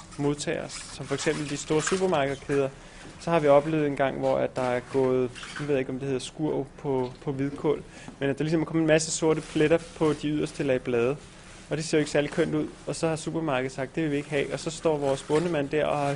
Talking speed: 255 wpm